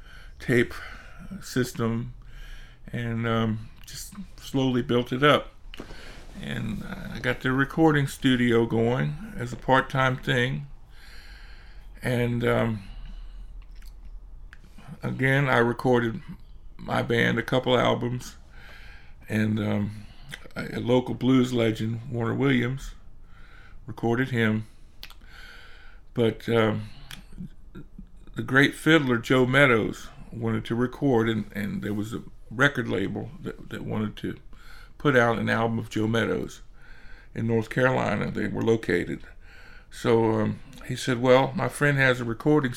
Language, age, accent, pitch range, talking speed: English, 50-69, American, 105-130 Hz, 120 wpm